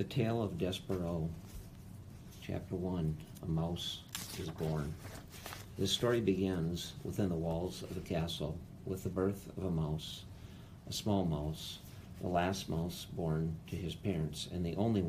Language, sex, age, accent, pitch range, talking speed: English, male, 50-69, American, 80-95 Hz, 150 wpm